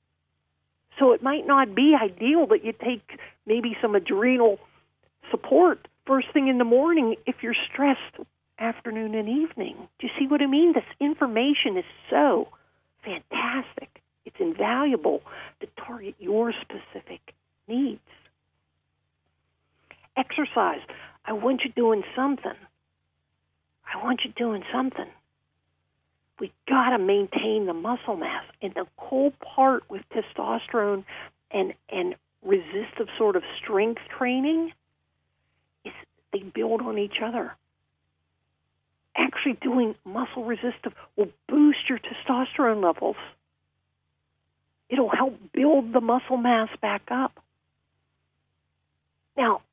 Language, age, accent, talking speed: English, 50-69, American, 115 wpm